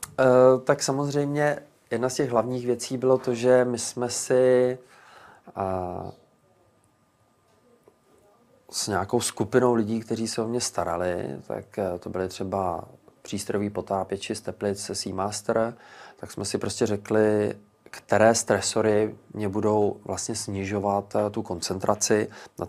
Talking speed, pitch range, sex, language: 115 wpm, 95-110 Hz, male, Czech